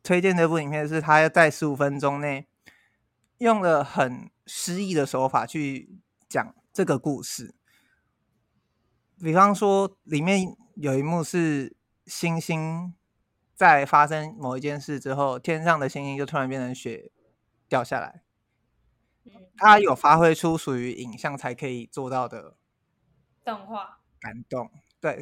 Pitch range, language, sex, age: 135-175 Hz, Chinese, male, 20-39